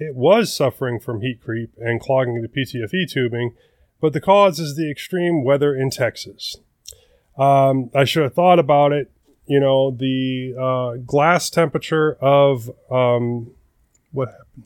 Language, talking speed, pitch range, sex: English, 145 wpm, 125-150 Hz, male